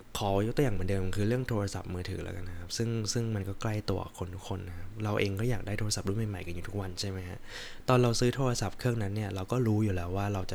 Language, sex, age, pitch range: Thai, male, 20-39, 95-115 Hz